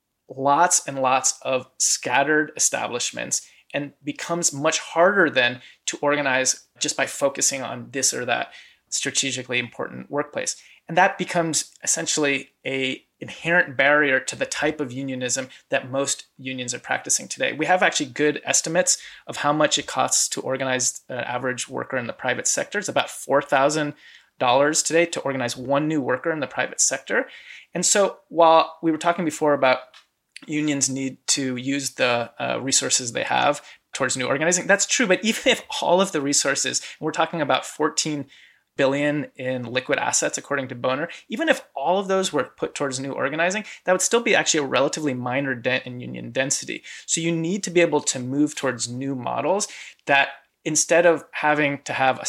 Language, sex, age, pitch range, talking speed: English, male, 20-39, 130-160 Hz, 175 wpm